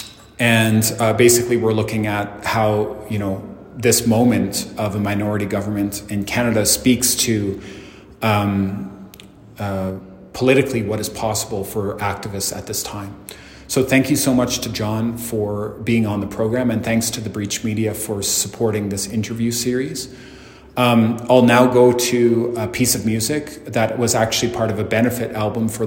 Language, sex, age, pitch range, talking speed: English, male, 30-49, 105-120 Hz, 165 wpm